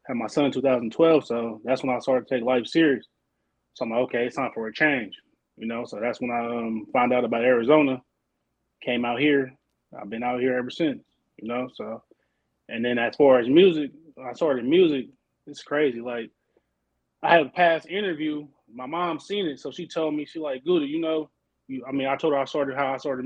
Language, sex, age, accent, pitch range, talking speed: English, male, 20-39, American, 120-145 Hz, 220 wpm